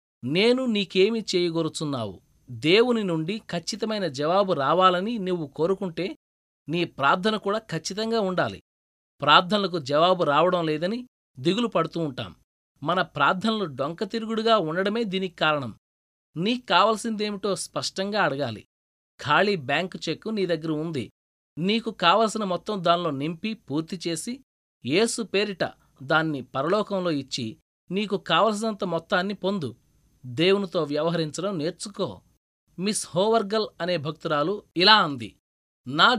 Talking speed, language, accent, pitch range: 100 wpm, Telugu, native, 155-210 Hz